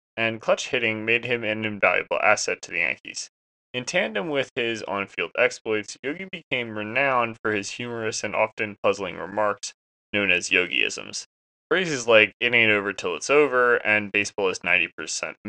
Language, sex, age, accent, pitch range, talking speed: English, male, 20-39, American, 100-125 Hz, 165 wpm